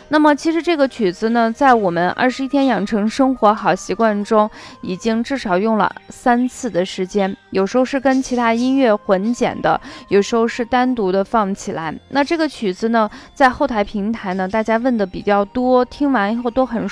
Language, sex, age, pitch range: Chinese, female, 20-39, 200-255 Hz